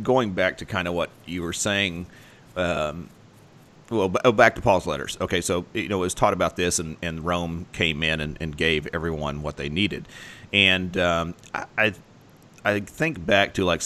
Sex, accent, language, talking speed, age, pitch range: male, American, English, 195 wpm, 40-59, 80-100 Hz